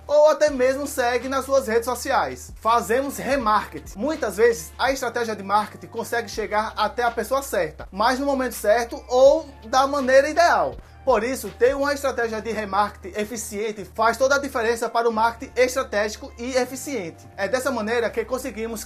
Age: 20-39